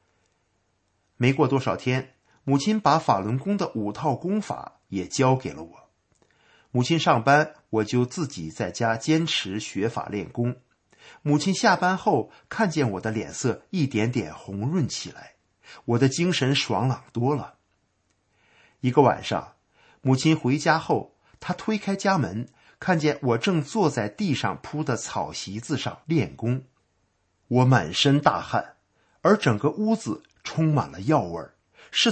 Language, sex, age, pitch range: Chinese, male, 50-69, 105-150 Hz